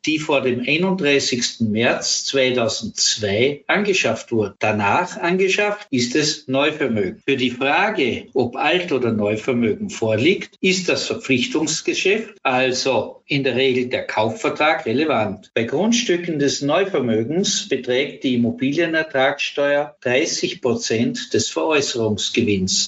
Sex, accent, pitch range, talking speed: male, German, 125-175 Hz, 110 wpm